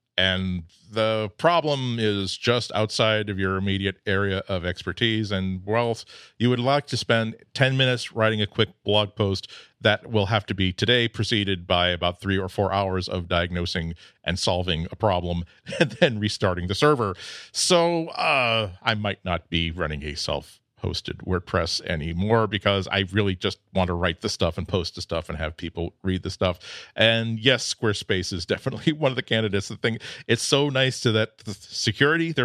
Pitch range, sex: 95-130 Hz, male